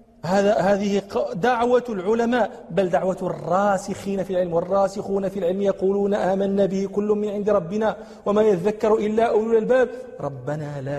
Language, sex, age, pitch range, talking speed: Arabic, male, 40-59, 165-230 Hz, 140 wpm